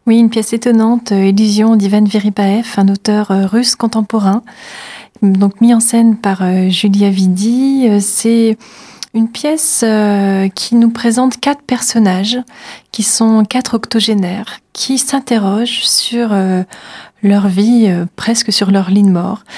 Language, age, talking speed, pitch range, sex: French, 30-49, 125 wpm, 200-230 Hz, female